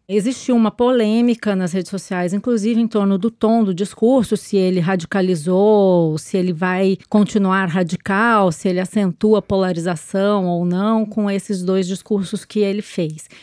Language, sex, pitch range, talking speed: Portuguese, female, 185-235 Hz, 155 wpm